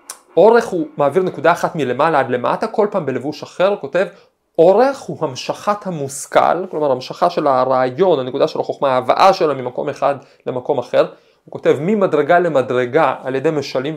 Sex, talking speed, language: male, 165 wpm, Hebrew